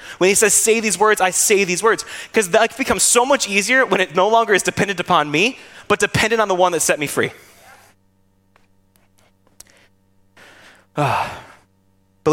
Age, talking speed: 20-39, 165 wpm